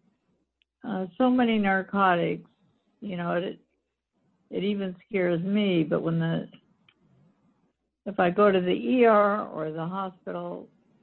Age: 60-79